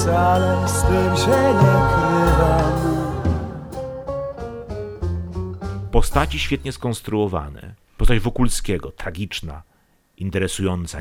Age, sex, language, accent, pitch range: 40-59, male, Polish, native, 90-110 Hz